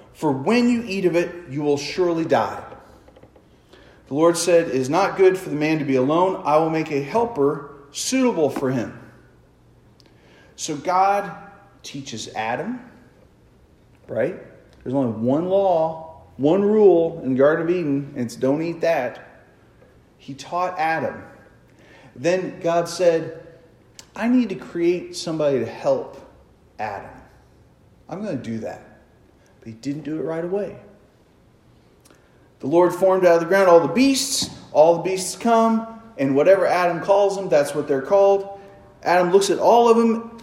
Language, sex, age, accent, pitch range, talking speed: English, male, 40-59, American, 135-190 Hz, 155 wpm